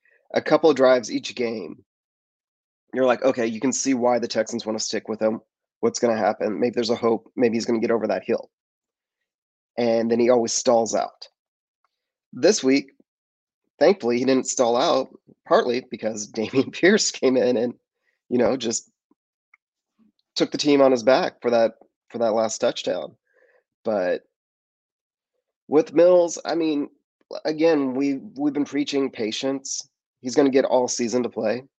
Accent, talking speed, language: American, 170 wpm, English